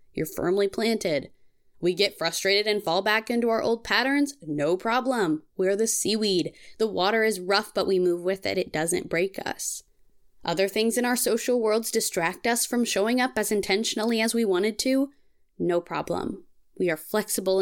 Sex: female